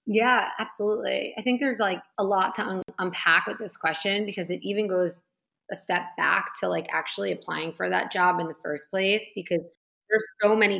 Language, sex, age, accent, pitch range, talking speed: English, female, 30-49, American, 160-200 Hz, 195 wpm